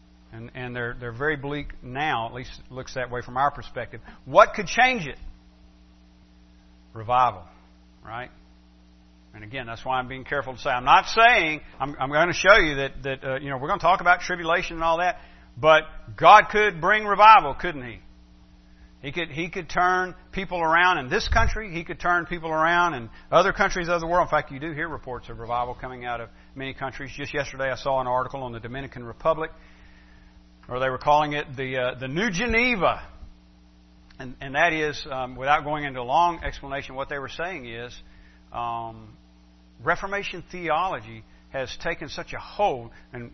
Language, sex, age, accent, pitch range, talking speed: English, male, 50-69, American, 105-155 Hz, 195 wpm